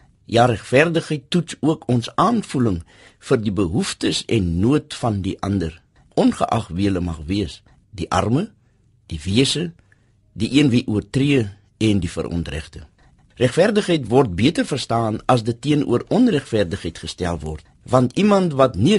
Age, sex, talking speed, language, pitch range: 50-69, male, 140 wpm, German, 95-130 Hz